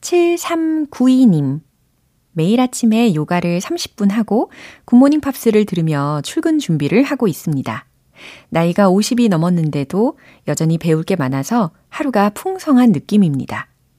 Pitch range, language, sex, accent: 155-225 Hz, Korean, female, native